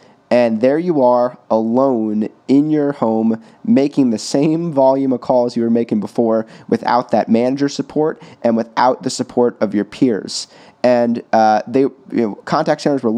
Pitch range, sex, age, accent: 115-140 Hz, male, 30-49, American